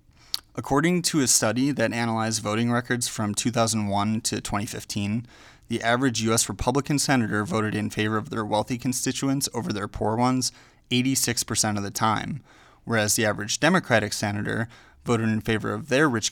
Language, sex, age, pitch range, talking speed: English, male, 20-39, 105-125 Hz, 160 wpm